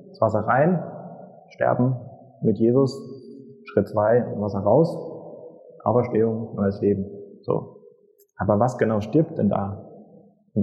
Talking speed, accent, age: 115 wpm, German, 30-49